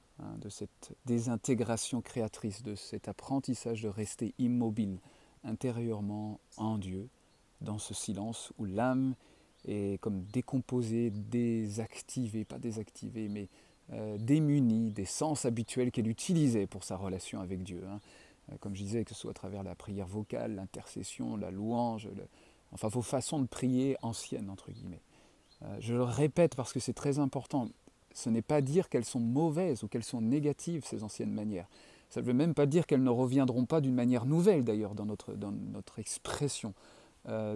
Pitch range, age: 105-130 Hz, 40-59